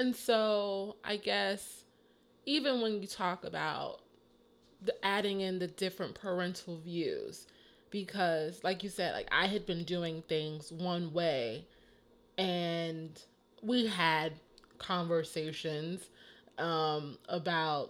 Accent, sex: American, female